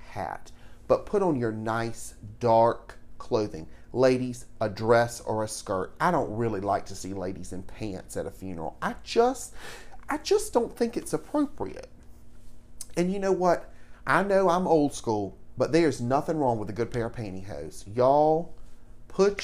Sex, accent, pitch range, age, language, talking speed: male, American, 110-150 Hz, 40-59, English, 165 wpm